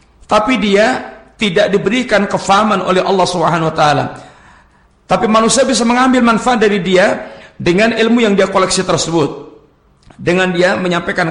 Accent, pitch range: native, 160-200 Hz